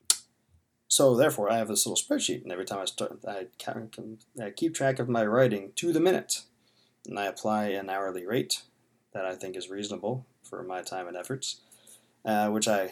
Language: English